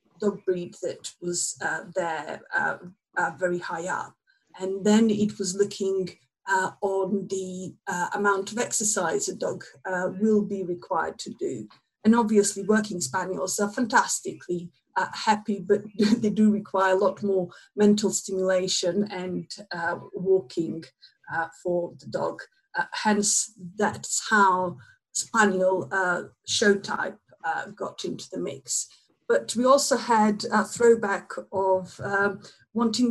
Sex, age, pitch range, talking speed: female, 50-69, 185-220 Hz, 140 wpm